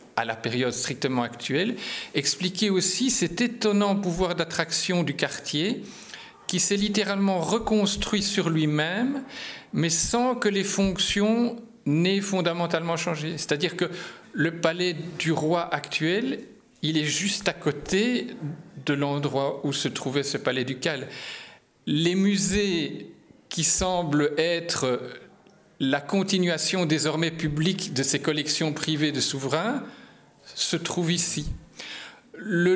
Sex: male